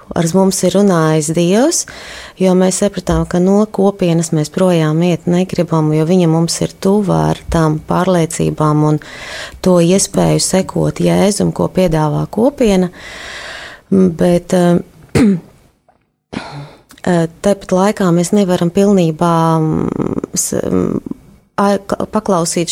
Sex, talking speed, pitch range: female, 100 wpm, 165-195 Hz